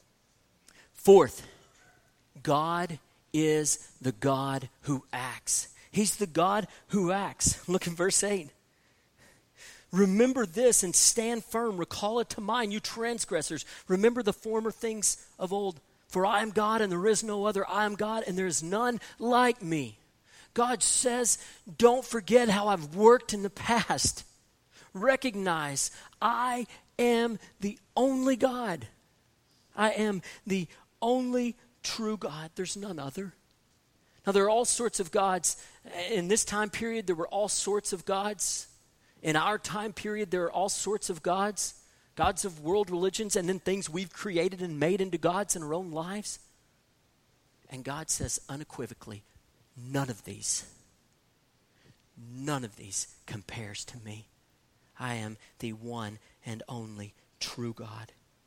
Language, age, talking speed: English, 40-59, 145 wpm